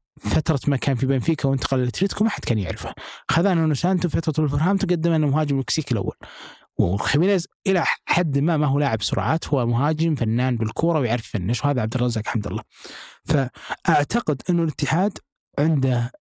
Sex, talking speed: male, 165 wpm